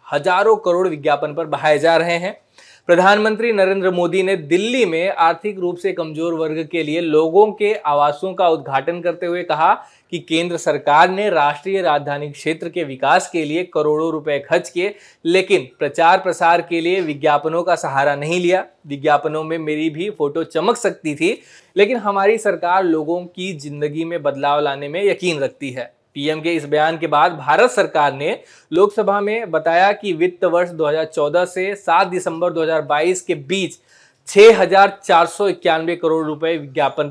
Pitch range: 155-190 Hz